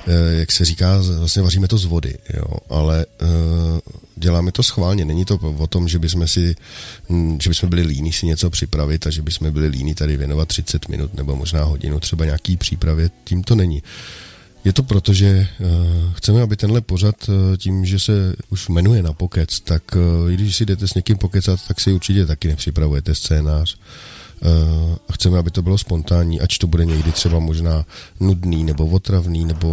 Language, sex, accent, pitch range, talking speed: Czech, male, native, 80-95 Hz, 180 wpm